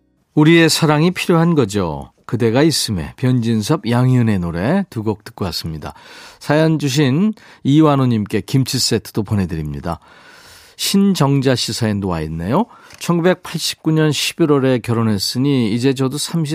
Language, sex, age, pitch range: Korean, male, 40-59, 115-155 Hz